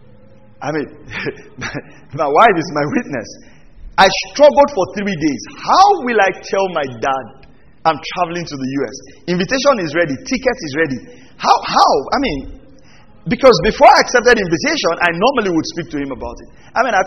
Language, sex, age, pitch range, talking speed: English, male, 40-59, 165-225 Hz, 170 wpm